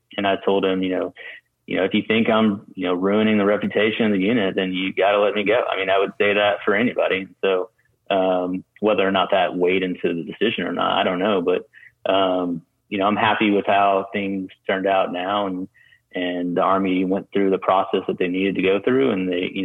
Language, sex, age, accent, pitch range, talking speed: English, male, 30-49, American, 95-100 Hz, 240 wpm